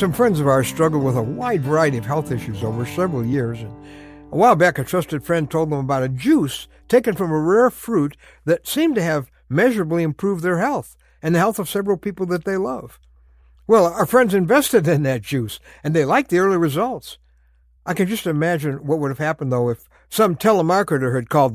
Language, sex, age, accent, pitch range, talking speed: English, male, 60-79, American, 130-195 Hz, 210 wpm